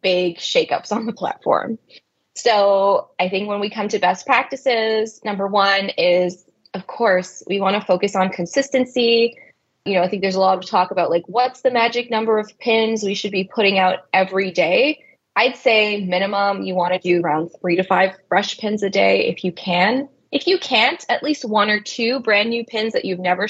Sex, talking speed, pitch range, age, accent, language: female, 205 wpm, 185-225 Hz, 20-39, American, English